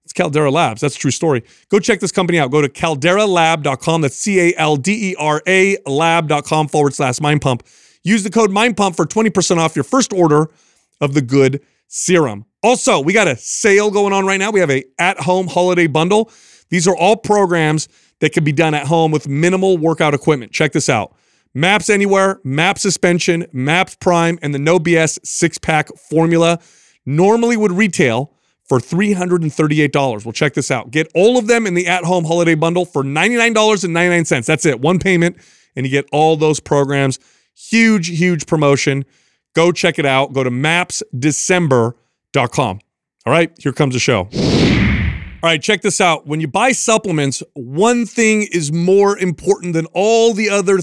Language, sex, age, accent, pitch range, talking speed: English, male, 30-49, American, 145-190 Hz, 170 wpm